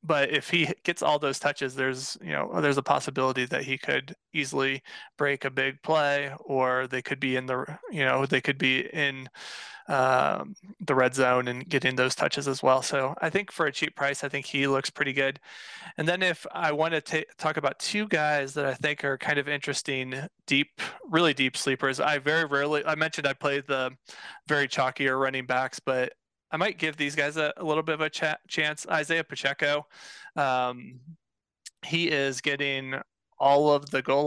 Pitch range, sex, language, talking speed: 135-150 Hz, male, English, 200 wpm